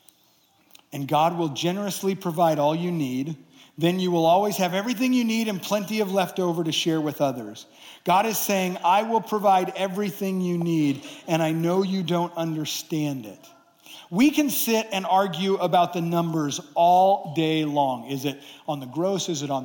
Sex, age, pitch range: male, 50-69, 155-195 Hz